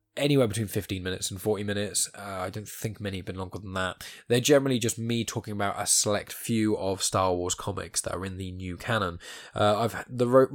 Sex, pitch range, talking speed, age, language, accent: male, 100-125 Hz, 230 wpm, 10-29, English, British